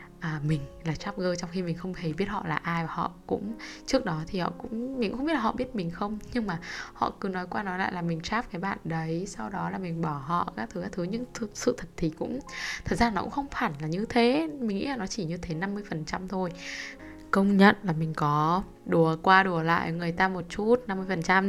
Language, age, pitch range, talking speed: Vietnamese, 10-29, 170-230 Hz, 260 wpm